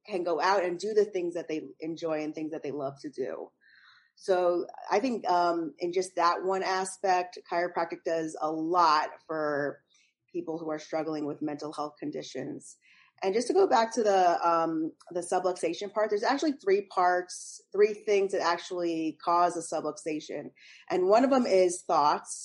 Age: 30-49